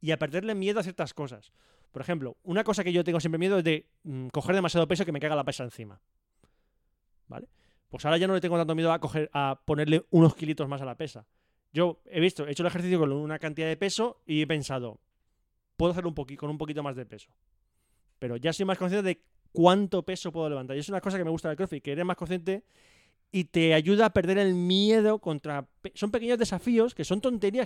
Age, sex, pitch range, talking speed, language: 20-39, male, 140-190 Hz, 240 wpm, Spanish